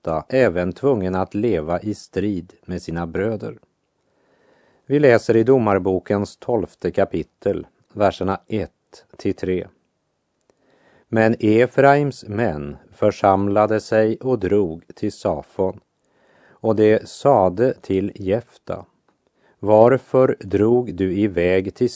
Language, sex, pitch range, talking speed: Russian, male, 95-115 Hz, 100 wpm